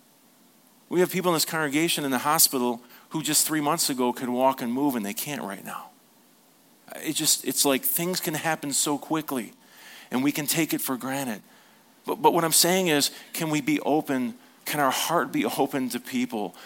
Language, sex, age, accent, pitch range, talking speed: English, male, 40-59, American, 125-165 Hz, 200 wpm